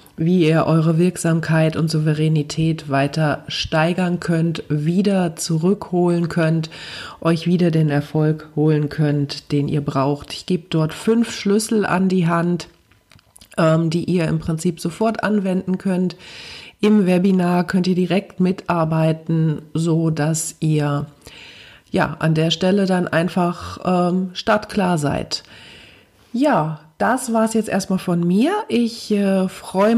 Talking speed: 130 wpm